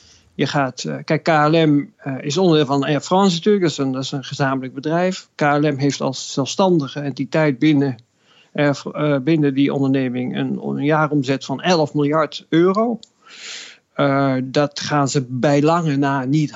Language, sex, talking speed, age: Dutch, male, 155 wpm, 50-69